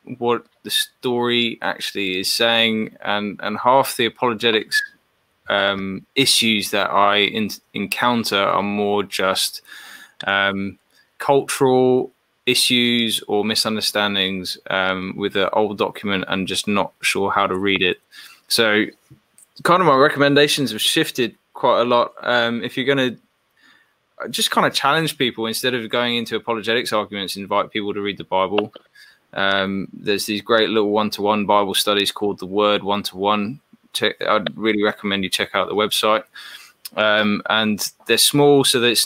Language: English